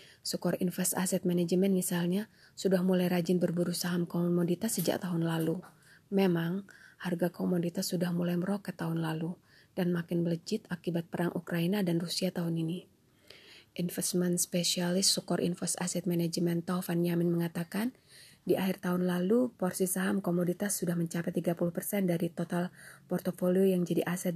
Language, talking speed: Indonesian, 140 wpm